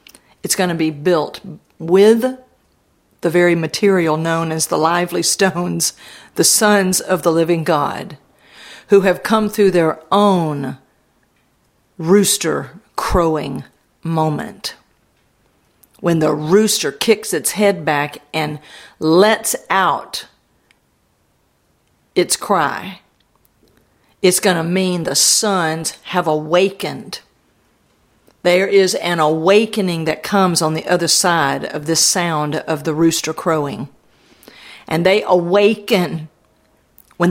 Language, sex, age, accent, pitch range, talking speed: English, female, 50-69, American, 160-195 Hz, 115 wpm